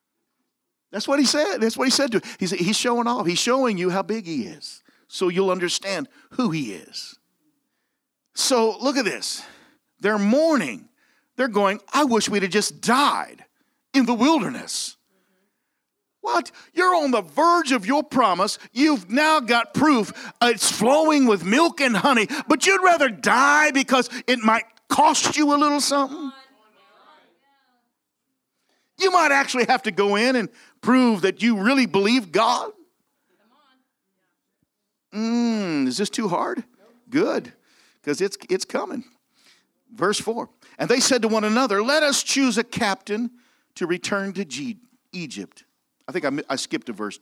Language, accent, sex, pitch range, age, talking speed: English, American, male, 205-280 Hz, 50-69, 155 wpm